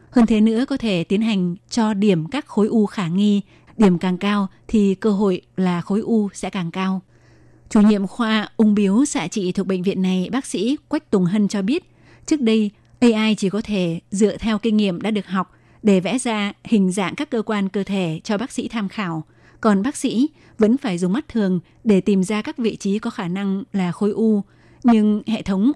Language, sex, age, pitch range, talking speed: Vietnamese, female, 20-39, 190-220 Hz, 220 wpm